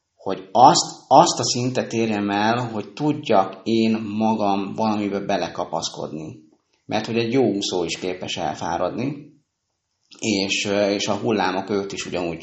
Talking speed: 135 wpm